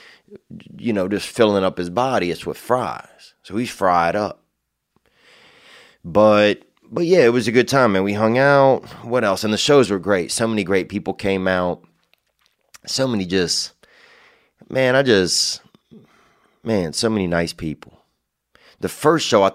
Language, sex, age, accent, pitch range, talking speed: English, male, 30-49, American, 85-110 Hz, 165 wpm